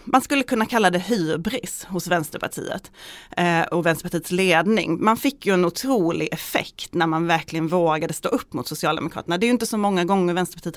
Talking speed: 185 wpm